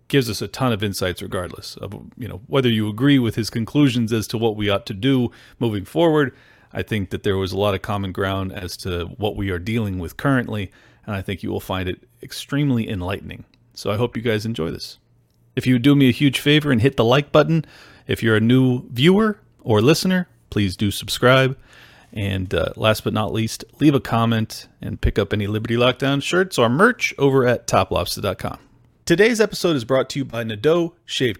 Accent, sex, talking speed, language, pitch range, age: American, male, 210 wpm, English, 110-140 Hz, 40-59